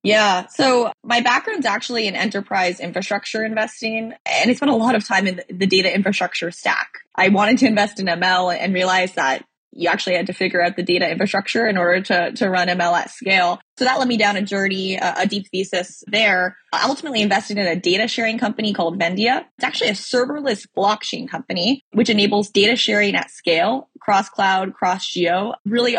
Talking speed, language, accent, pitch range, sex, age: 195 wpm, English, American, 180-210 Hz, female, 20-39